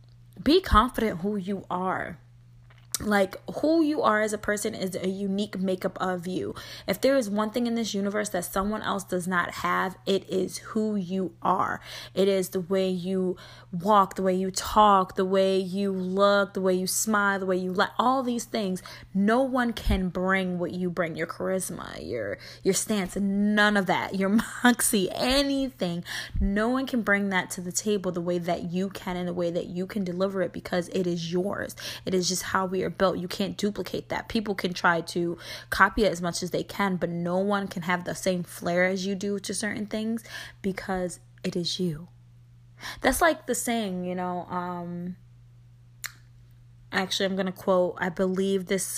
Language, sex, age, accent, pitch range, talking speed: English, female, 20-39, American, 175-200 Hz, 195 wpm